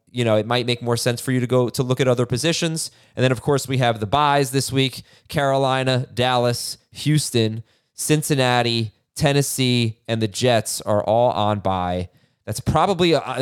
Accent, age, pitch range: American, 30-49, 110-165 Hz